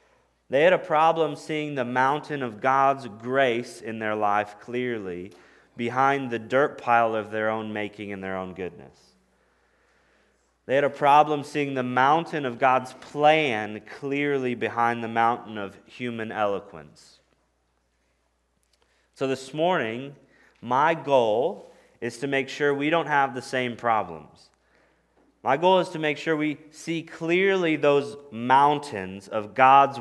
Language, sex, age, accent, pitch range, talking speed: English, male, 30-49, American, 105-140 Hz, 140 wpm